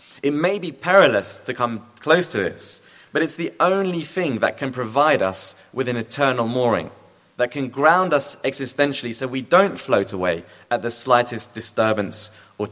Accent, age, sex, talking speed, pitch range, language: British, 30-49, male, 175 wpm, 110-155 Hz, English